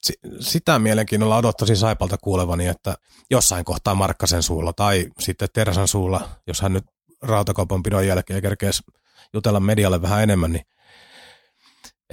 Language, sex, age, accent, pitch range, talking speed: Finnish, male, 30-49, native, 95-115 Hz, 125 wpm